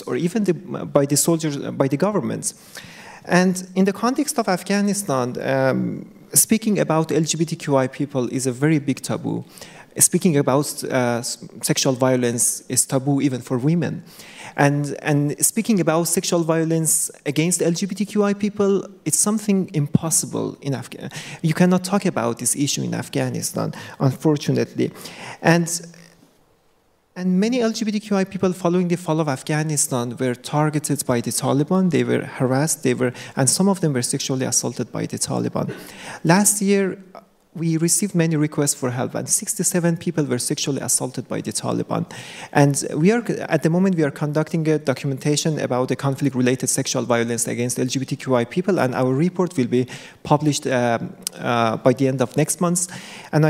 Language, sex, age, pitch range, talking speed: English, male, 30-49, 130-175 Hz, 160 wpm